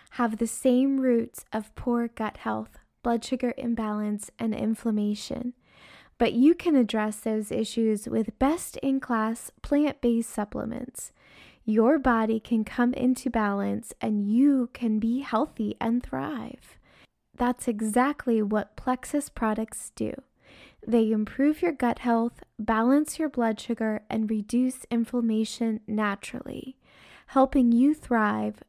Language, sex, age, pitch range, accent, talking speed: English, female, 20-39, 220-260 Hz, American, 120 wpm